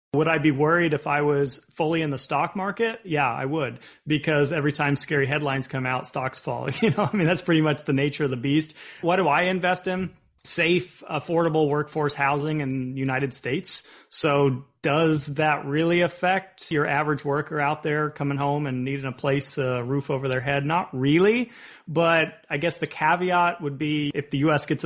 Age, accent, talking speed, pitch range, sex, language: 30-49, American, 200 wpm, 135-160 Hz, male, English